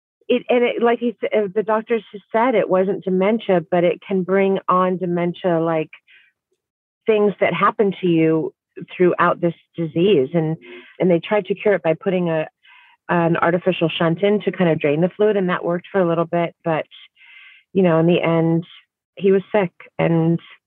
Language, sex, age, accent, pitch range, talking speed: English, female, 30-49, American, 170-205 Hz, 190 wpm